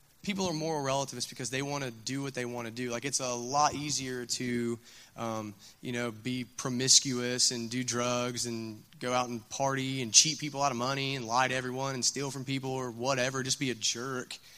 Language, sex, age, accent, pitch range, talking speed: English, male, 20-39, American, 120-150 Hz, 220 wpm